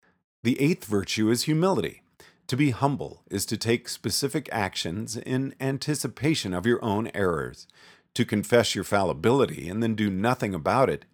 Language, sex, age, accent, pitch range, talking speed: English, male, 40-59, American, 100-135 Hz, 155 wpm